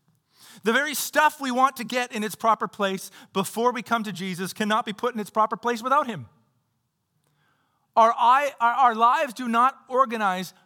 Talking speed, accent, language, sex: 180 wpm, American, English, male